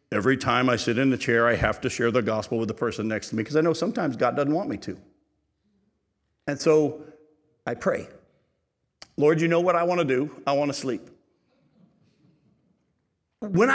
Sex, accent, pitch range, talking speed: male, American, 125-155 Hz, 195 wpm